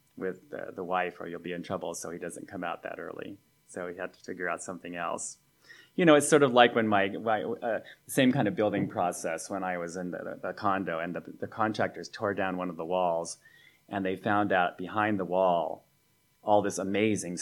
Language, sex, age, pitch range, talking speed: English, male, 30-49, 95-125 Hz, 225 wpm